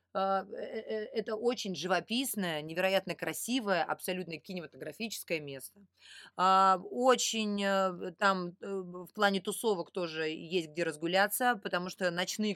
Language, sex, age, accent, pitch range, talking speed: Russian, female, 20-39, native, 155-200 Hz, 95 wpm